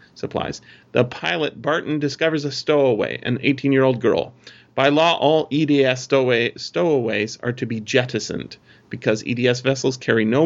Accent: American